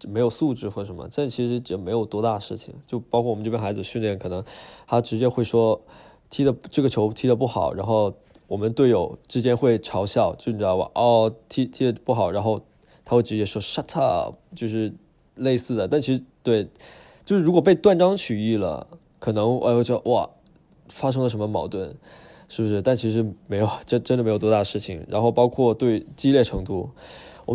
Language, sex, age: Chinese, male, 20-39